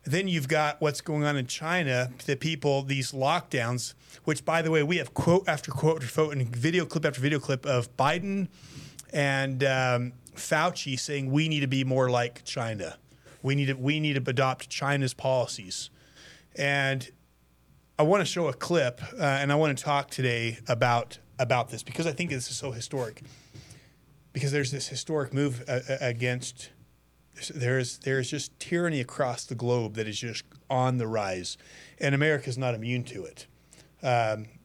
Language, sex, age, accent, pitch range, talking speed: English, male, 30-49, American, 125-150 Hz, 180 wpm